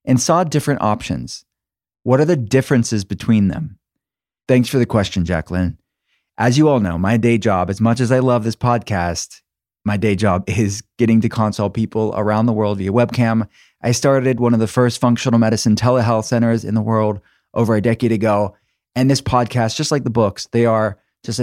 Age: 20-39